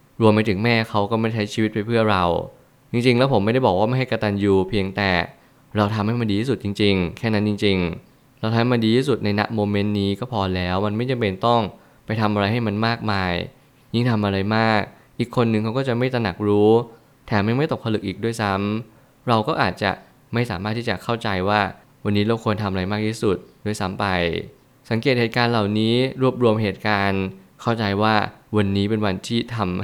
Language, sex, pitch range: Thai, male, 100-115 Hz